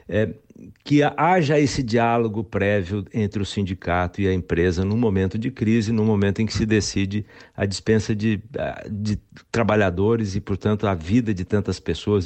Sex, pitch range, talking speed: male, 100-135 Hz, 160 wpm